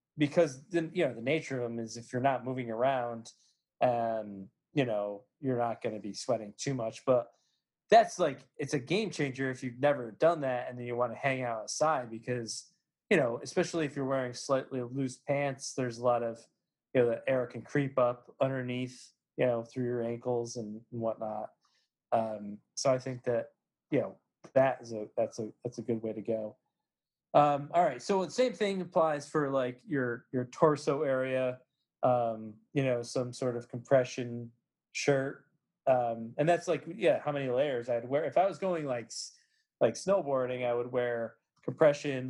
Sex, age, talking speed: male, 20-39, 190 wpm